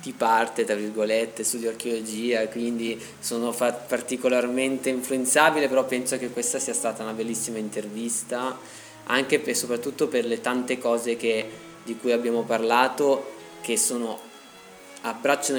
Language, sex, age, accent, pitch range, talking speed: Italian, male, 20-39, native, 115-140 Hz, 135 wpm